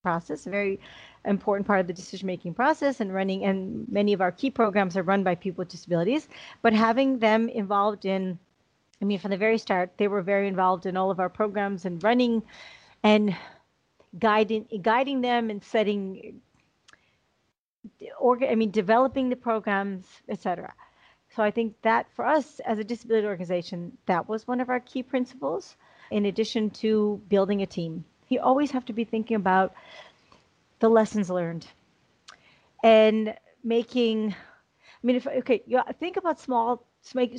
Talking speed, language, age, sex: 165 wpm, English, 40-59, female